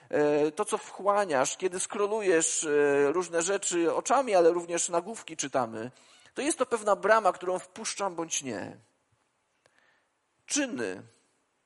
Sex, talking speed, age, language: male, 115 wpm, 40-59, Polish